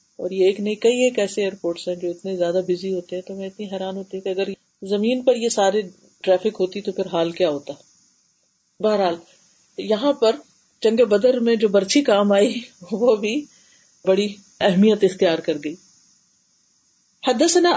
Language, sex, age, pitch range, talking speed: Urdu, female, 40-59, 195-240 Hz, 175 wpm